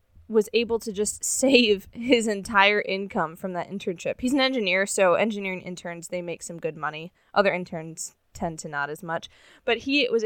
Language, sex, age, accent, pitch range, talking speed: English, female, 20-39, American, 195-250 Hz, 185 wpm